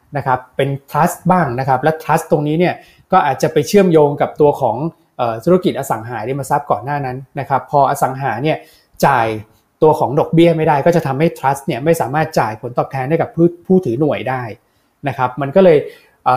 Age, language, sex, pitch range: 20-39, Thai, male, 130-165 Hz